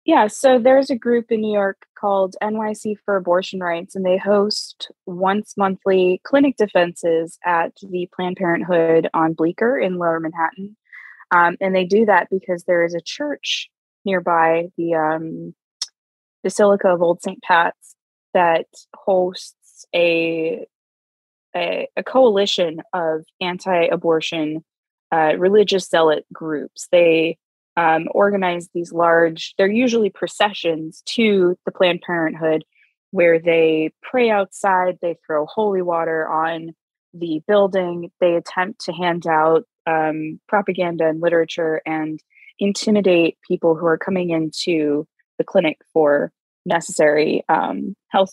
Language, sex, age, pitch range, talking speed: English, female, 20-39, 165-195 Hz, 130 wpm